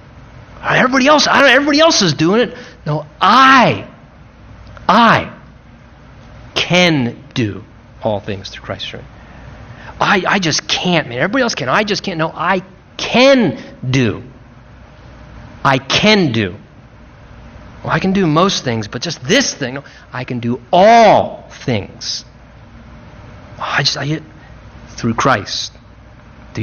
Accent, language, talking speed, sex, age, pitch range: American, English, 135 wpm, male, 40-59, 115-140 Hz